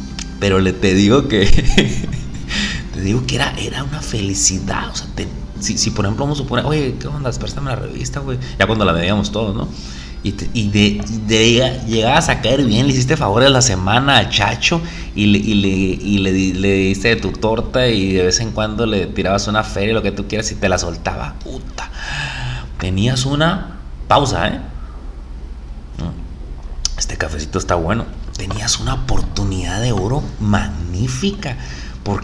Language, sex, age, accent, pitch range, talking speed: Spanish, male, 30-49, Mexican, 80-115 Hz, 185 wpm